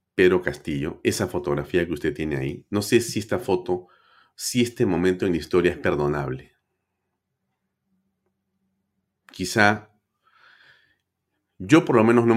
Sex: male